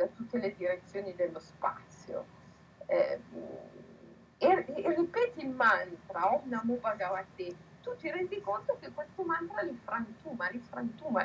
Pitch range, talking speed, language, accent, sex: 185-250 Hz, 140 wpm, Italian, native, female